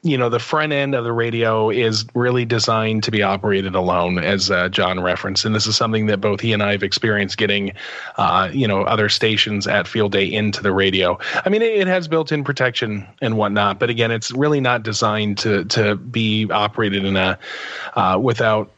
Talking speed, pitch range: 205 wpm, 105-135 Hz